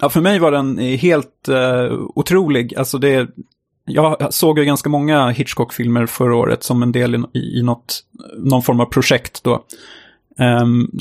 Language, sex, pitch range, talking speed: Swedish, male, 125-145 Hz, 165 wpm